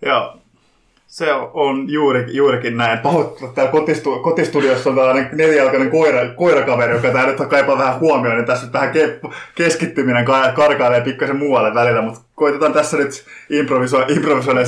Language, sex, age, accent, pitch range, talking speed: Finnish, male, 20-39, native, 120-145 Hz, 125 wpm